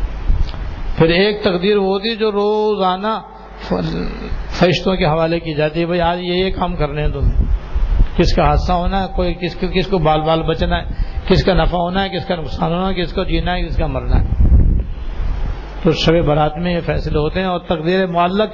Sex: male